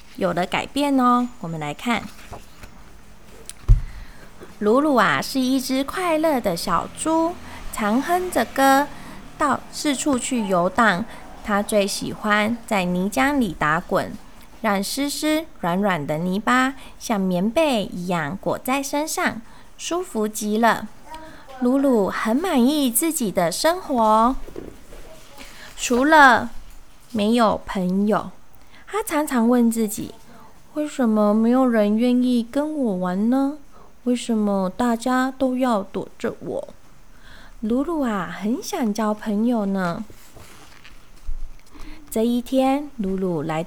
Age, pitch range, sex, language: 20-39, 200-275 Hz, female, Chinese